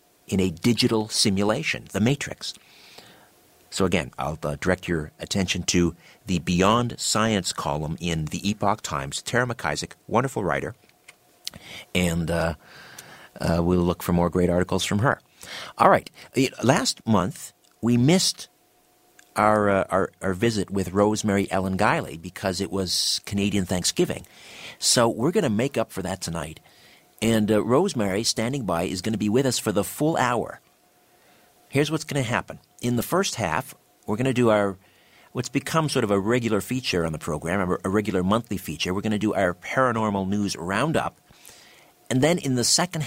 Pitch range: 95-120 Hz